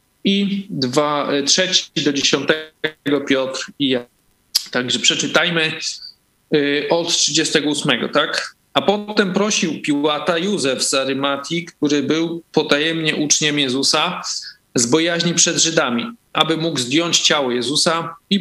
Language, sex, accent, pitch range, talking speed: Polish, male, native, 130-160 Hz, 115 wpm